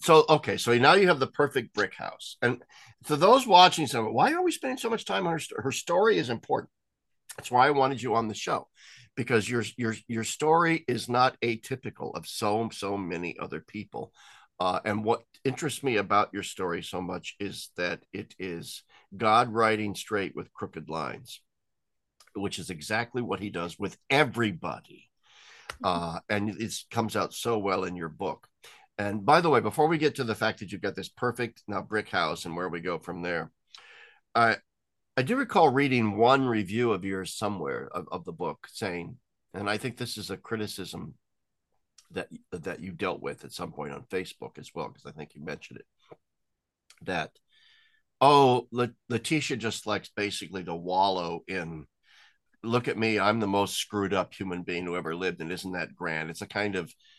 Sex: male